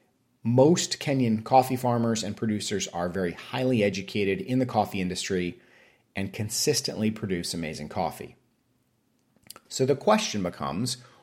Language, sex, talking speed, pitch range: English, male, 125 wpm, 95-125 Hz